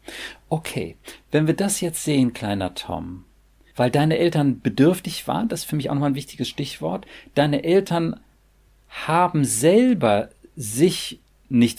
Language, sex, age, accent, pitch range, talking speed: German, male, 40-59, German, 105-145 Hz, 145 wpm